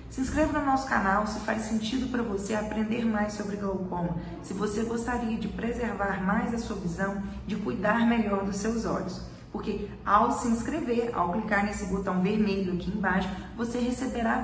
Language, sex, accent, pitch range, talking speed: Portuguese, female, Brazilian, 195-235 Hz, 175 wpm